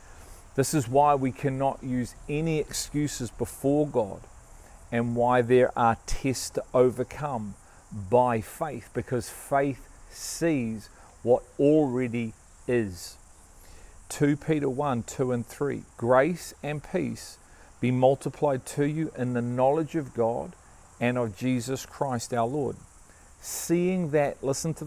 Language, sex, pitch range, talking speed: English, male, 105-145 Hz, 130 wpm